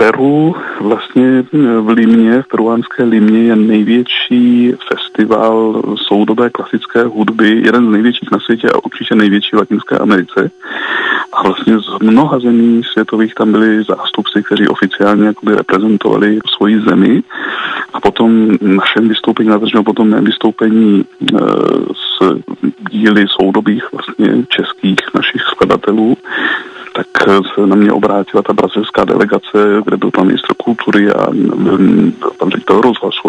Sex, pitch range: male, 105-115 Hz